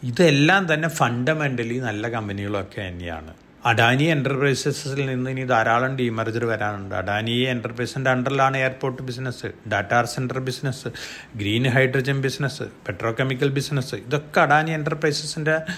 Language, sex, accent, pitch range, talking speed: Malayalam, male, native, 115-145 Hz, 115 wpm